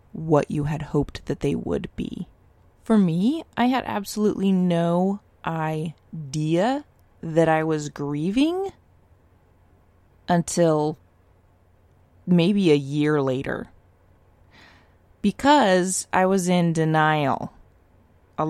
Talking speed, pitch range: 95 wpm, 145-185 Hz